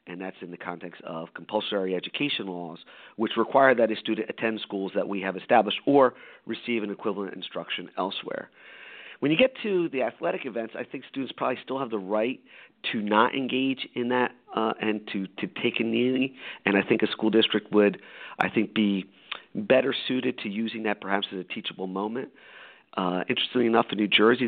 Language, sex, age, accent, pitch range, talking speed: English, male, 40-59, American, 100-125 Hz, 195 wpm